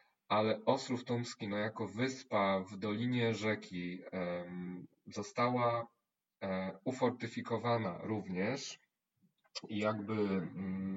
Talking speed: 70 wpm